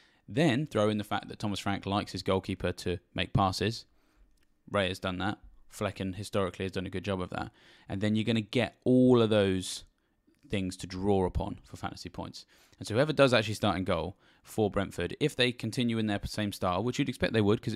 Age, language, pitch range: 10-29, English, 90-110 Hz